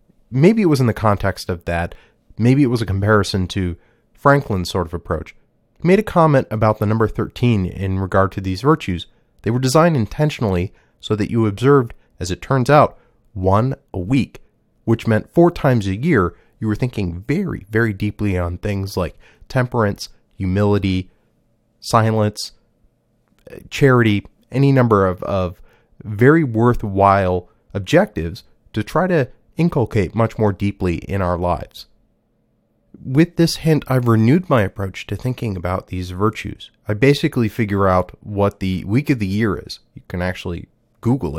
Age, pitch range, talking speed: 30-49, 95-125 Hz, 160 wpm